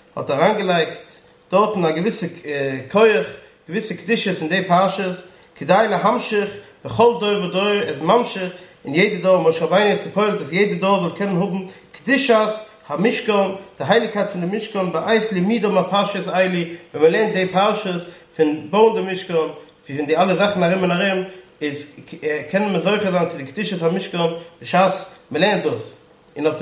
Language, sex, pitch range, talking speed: English, male, 165-205 Hz, 175 wpm